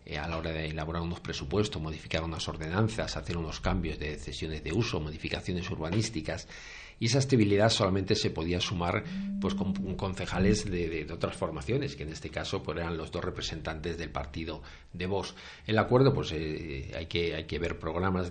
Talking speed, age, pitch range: 185 wpm, 50-69, 80-95 Hz